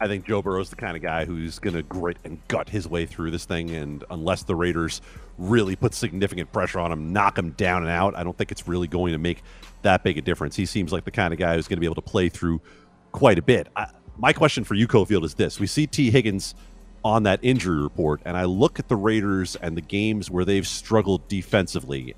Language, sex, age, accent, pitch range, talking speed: English, male, 40-59, American, 90-130 Hz, 255 wpm